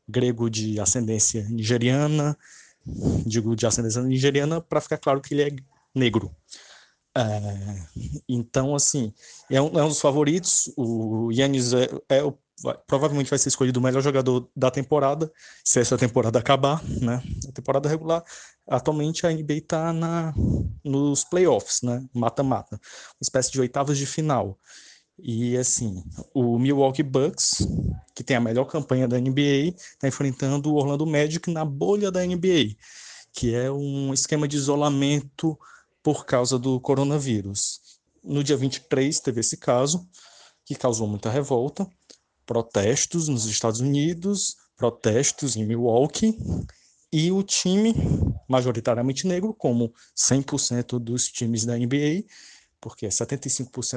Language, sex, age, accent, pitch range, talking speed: Portuguese, male, 20-39, Brazilian, 120-150 Hz, 135 wpm